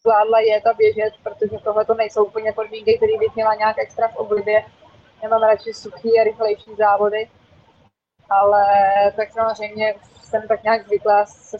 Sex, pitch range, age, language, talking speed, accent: female, 205-220 Hz, 20-39, Czech, 165 wpm, native